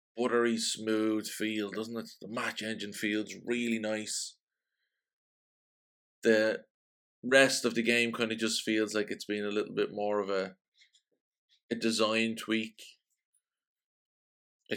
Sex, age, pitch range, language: male, 20-39, 100-115 Hz, English